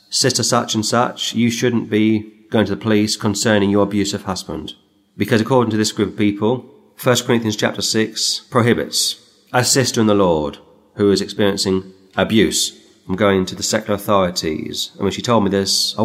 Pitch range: 100-120 Hz